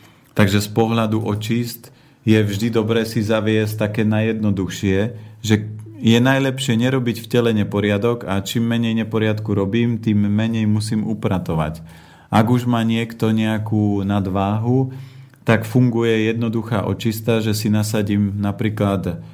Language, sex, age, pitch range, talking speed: Slovak, male, 40-59, 100-115 Hz, 125 wpm